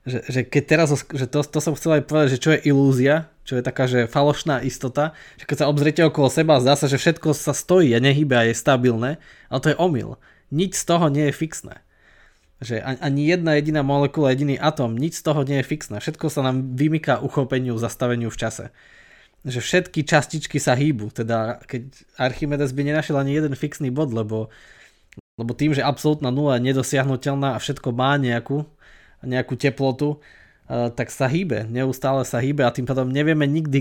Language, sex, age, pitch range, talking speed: Slovak, male, 20-39, 125-150 Hz, 195 wpm